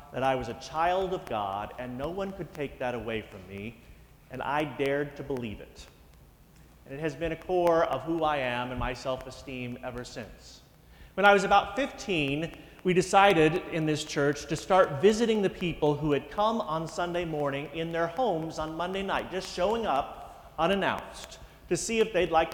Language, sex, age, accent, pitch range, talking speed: English, male, 40-59, American, 140-180 Hz, 195 wpm